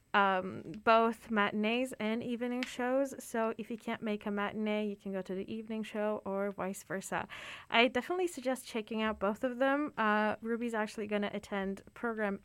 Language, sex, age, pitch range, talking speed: English, female, 20-39, 210-260 Hz, 185 wpm